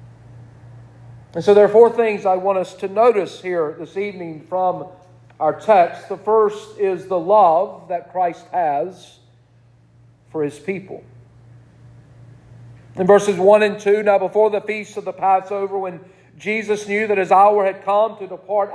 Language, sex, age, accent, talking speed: English, male, 50-69, American, 160 wpm